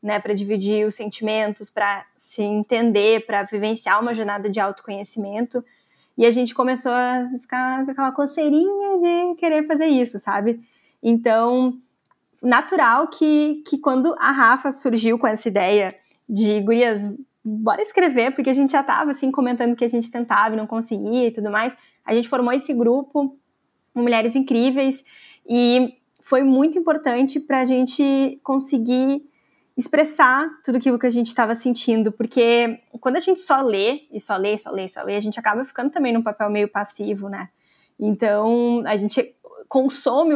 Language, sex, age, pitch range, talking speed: Portuguese, female, 20-39, 220-270 Hz, 165 wpm